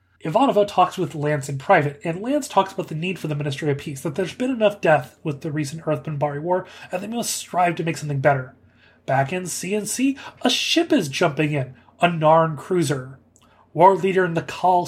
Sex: male